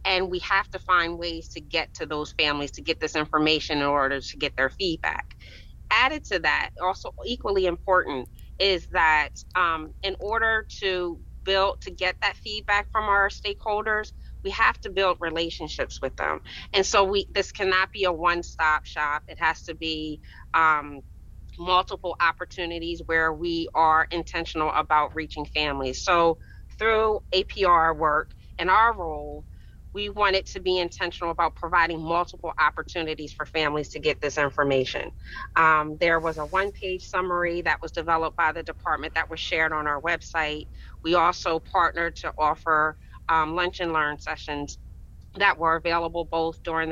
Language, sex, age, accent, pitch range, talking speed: English, female, 30-49, American, 155-180 Hz, 160 wpm